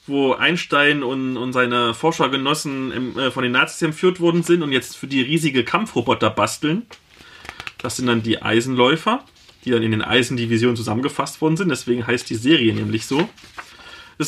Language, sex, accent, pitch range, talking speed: German, male, German, 125-165 Hz, 160 wpm